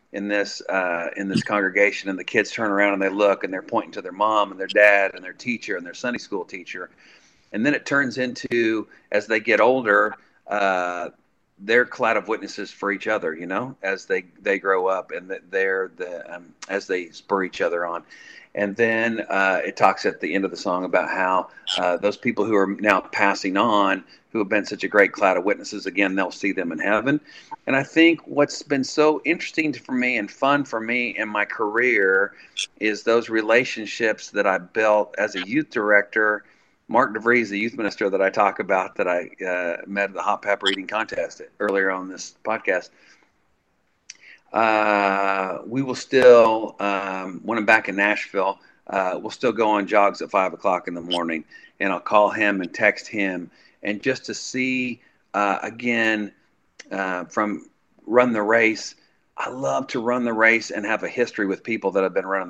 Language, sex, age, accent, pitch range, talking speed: English, male, 40-59, American, 100-125 Hz, 200 wpm